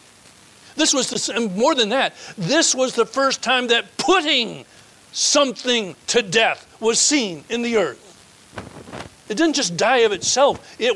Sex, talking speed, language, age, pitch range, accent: male, 160 wpm, English, 60-79, 190-265 Hz, American